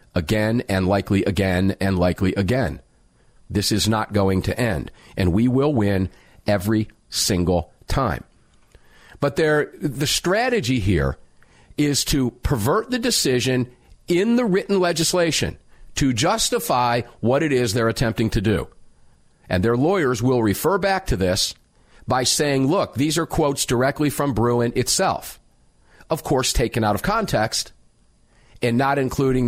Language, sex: English, male